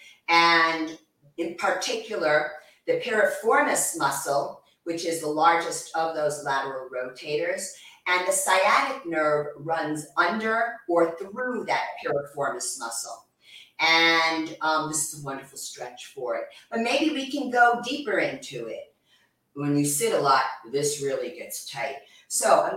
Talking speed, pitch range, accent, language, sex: 140 wpm, 145-230 Hz, American, English, female